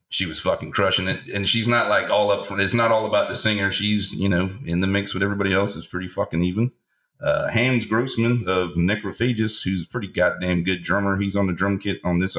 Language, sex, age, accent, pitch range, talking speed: English, male, 40-59, American, 90-110 Hz, 235 wpm